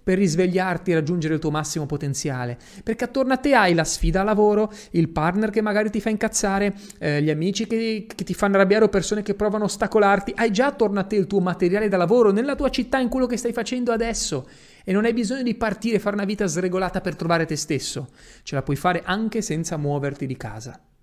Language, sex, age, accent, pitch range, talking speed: Italian, male, 30-49, native, 145-200 Hz, 230 wpm